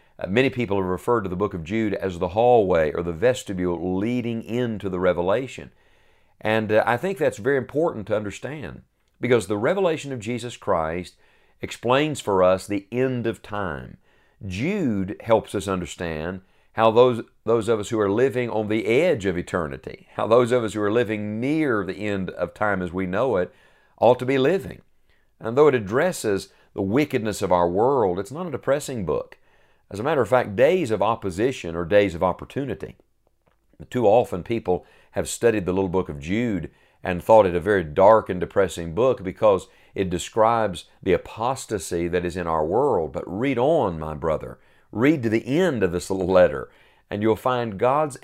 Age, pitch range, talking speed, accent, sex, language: 50-69, 90-120 Hz, 185 wpm, American, male, English